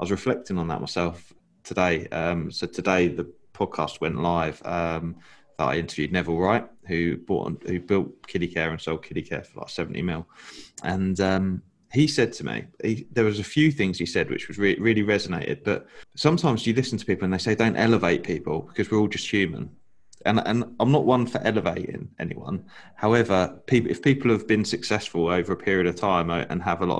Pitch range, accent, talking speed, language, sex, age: 85-105 Hz, British, 210 wpm, English, male, 20-39